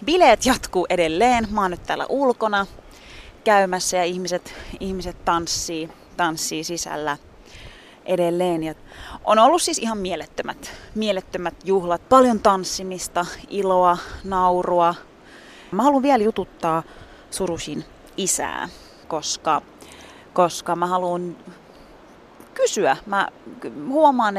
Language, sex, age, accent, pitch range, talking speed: Finnish, female, 30-49, native, 170-225 Hz, 100 wpm